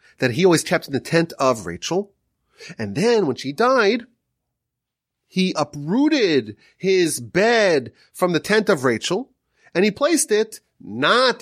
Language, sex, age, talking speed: English, male, 30-49, 145 wpm